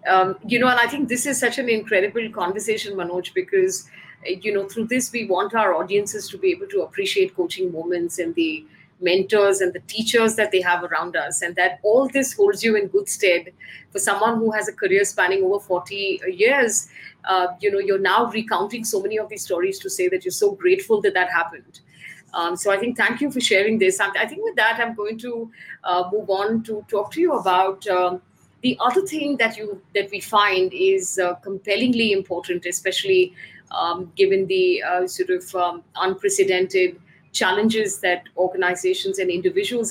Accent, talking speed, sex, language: Indian, 195 wpm, female, English